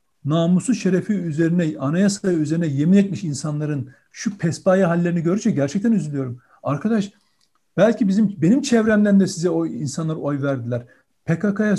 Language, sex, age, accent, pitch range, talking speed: Turkish, male, 60-79, native, 175-225 Hz, 130 wpm